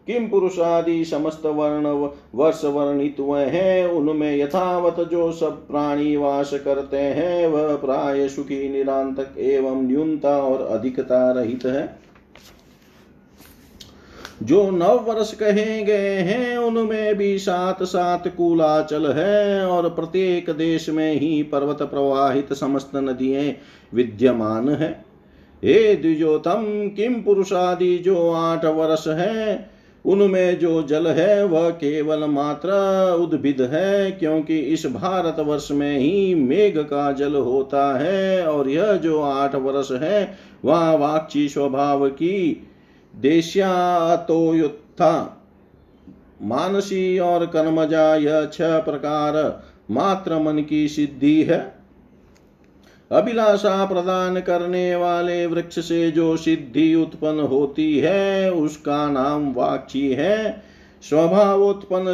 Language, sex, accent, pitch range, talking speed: Hindi, male, native, 145-185 Hz, 110 wpm